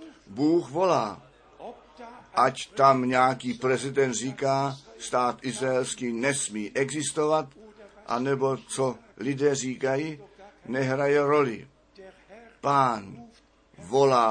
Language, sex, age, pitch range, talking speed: Czech, male, 60-79, 115-145 Hz, 80 wpm